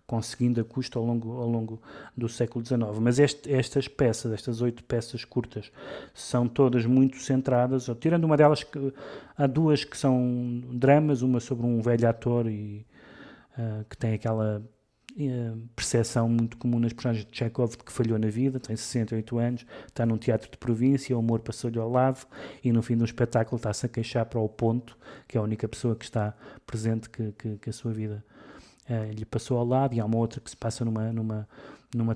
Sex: male